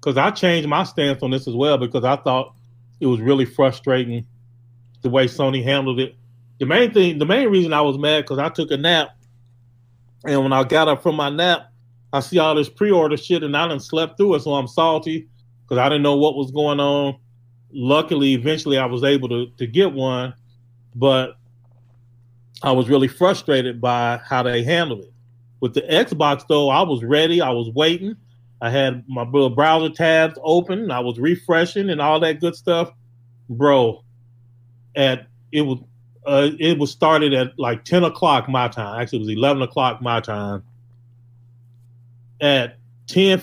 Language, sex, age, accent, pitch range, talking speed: English, male, 30-49, American, 120-155 Hz, 180 wpm